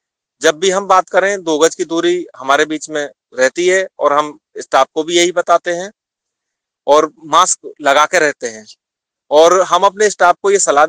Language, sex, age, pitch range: English, male, 30-49, 155-190 Hz